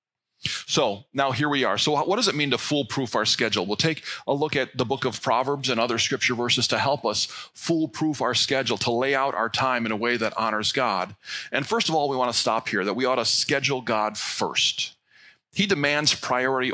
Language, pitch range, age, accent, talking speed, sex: English, 120-165 Hz, 40-59, American, 225 wpm, male